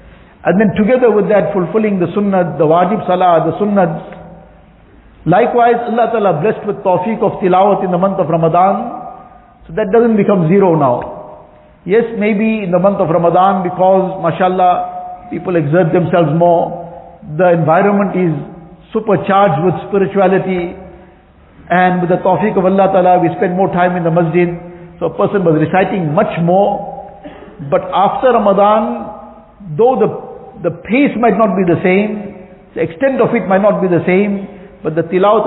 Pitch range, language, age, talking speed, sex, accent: 175-205 Hz, English, 50-69, 160 wpm, male, Indian